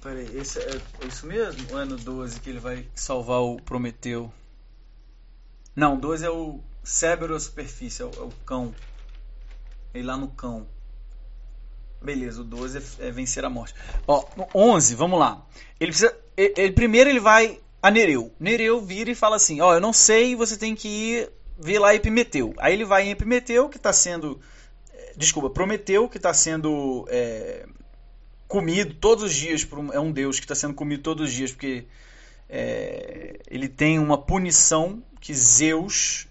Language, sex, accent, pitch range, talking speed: Portuguese, male, Brazilian, 130-180 Hz, 180 wpm